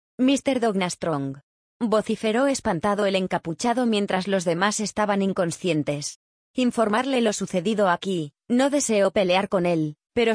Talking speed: 130 wpm